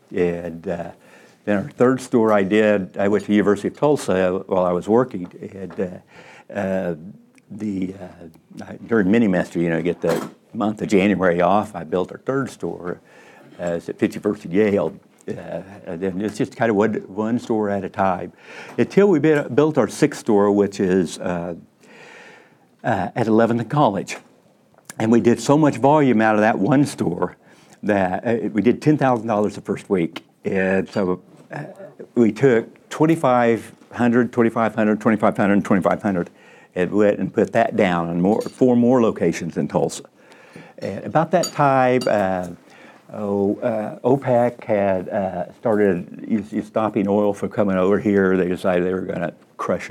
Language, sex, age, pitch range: English, male, 60-79, 95-120 Hz